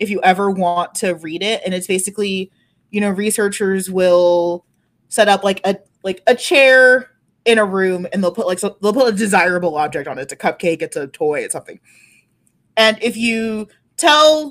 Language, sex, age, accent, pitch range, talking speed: English, female, 20-39, American, 180-235 Hz, 200 wpm